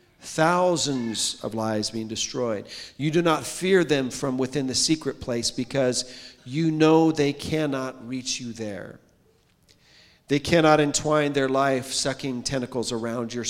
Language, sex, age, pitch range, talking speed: English, male, 40-59, 115-135 Hz, 140 wpm